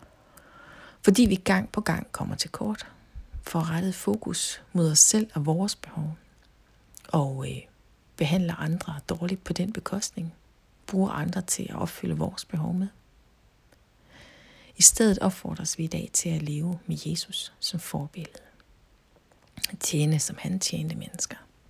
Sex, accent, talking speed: female, native, 140 wpm